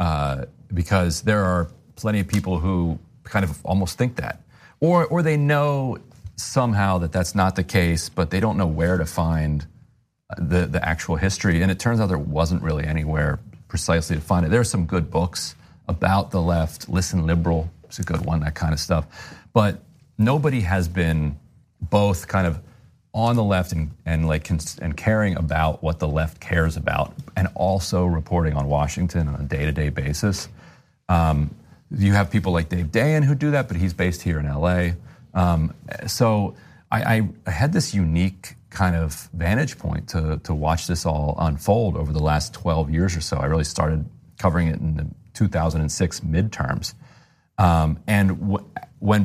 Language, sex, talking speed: English, male, 180 wpm